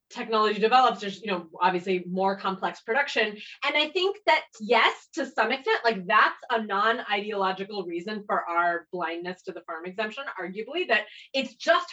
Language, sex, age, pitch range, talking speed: English, female, 20-39, 180-235 Hz, 165 wpm